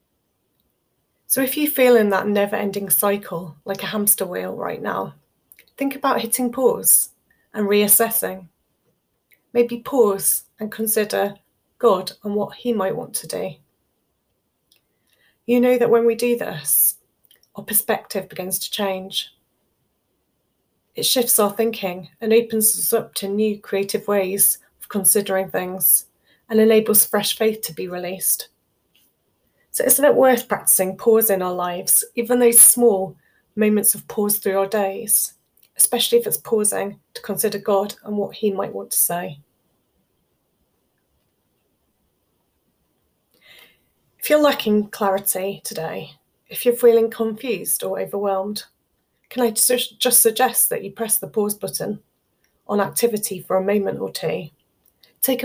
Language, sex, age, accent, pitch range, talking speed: English, female, 30-49, British, 195-235 Hz, 140 wpm